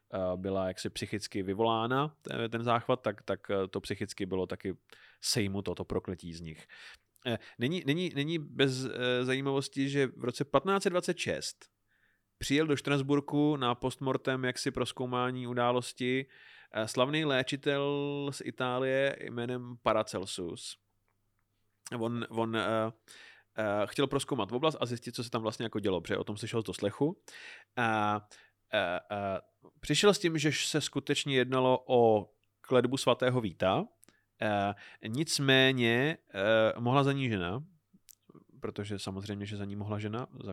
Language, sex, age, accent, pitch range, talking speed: Czech, male, 30-49, native, 105-135 Hz, 130 wpm